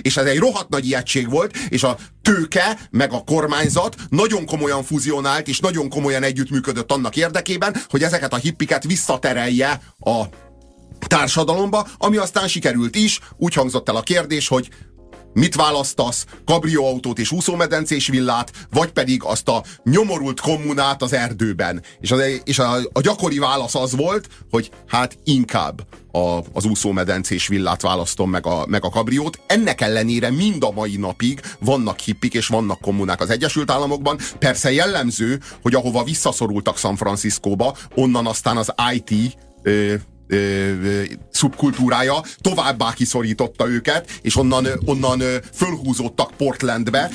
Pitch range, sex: 115-150 Hz, male